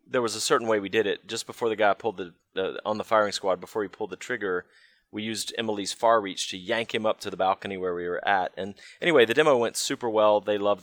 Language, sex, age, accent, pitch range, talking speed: English, male, 30-49, American, 95-115 Hz, 270 wpm